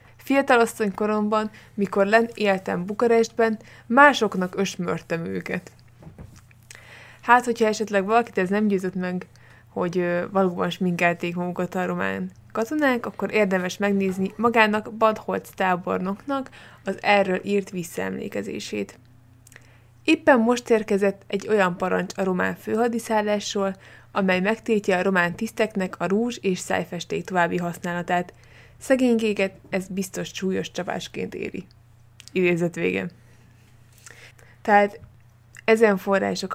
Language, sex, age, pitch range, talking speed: Hungarian, female, 20-39, 170-215 Hz, 105 wpm